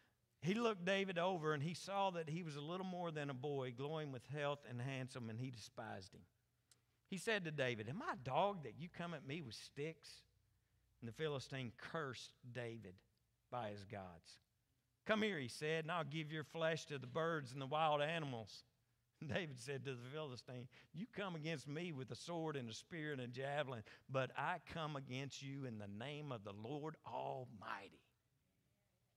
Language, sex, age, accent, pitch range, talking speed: English, male, 50-69, American, 120-175 Hz, 195 wpm